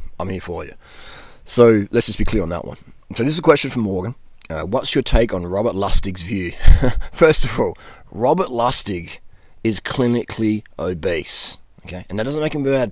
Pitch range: 90-125 Hz